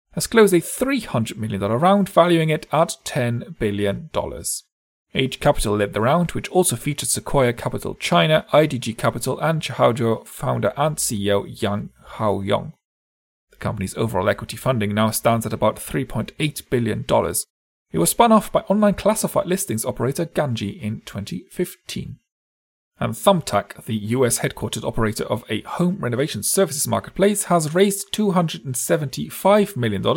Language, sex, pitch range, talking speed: English, male, 110-160 Hz, 135 wpm